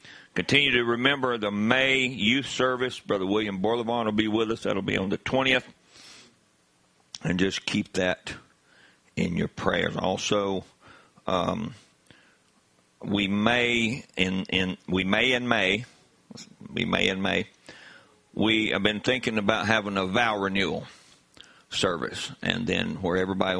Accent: American